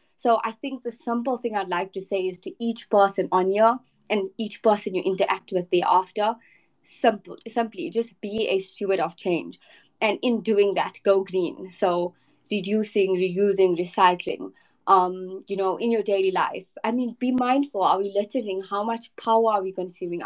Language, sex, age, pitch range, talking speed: Arabic, female, 20-39, 180-215 Hz, 180 wpm